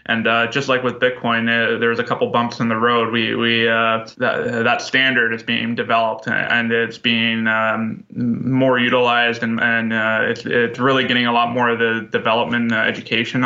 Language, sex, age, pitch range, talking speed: English, male, 20-39, 115-125 Hz, 190 wpm